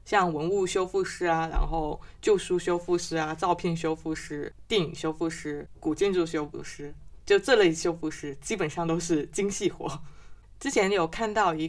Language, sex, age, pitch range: Chinese, female, 20-39, 160-215 Hz